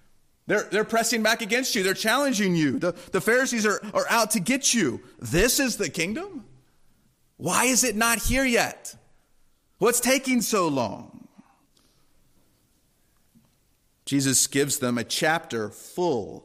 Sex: male